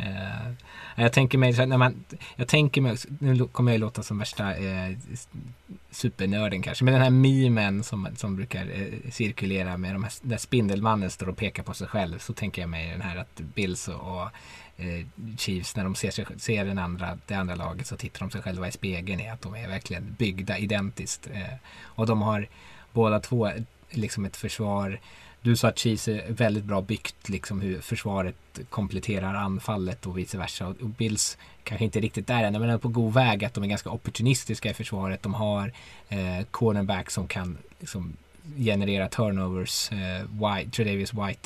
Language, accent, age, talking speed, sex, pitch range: Swedish, Norwegian, 20-39, 185 wpm, male, 95-115 Hz